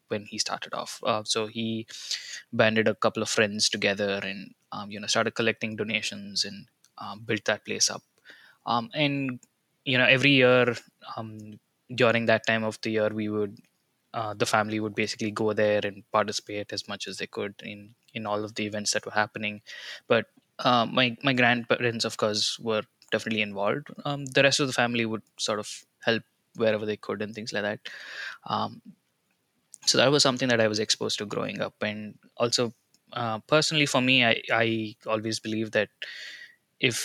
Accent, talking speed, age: Indian, 185 wpm, 20-39